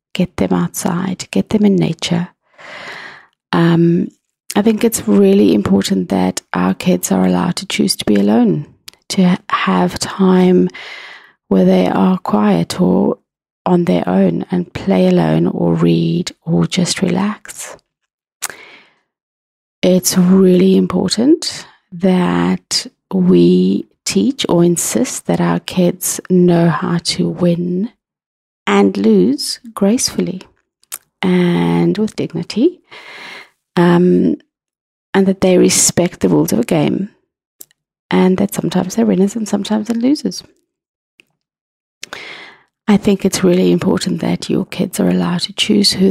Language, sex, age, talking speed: English, female, 30-49, 125 wpm